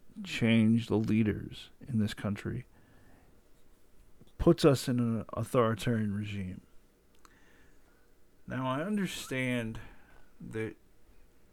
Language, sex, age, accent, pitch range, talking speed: English, male, 50-69, American, 105-125 Hz, 85 wpm